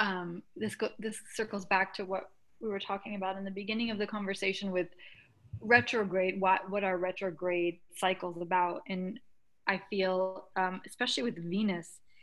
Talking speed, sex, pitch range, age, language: 160 wpm, female, 180-210 Hz, 20-39, English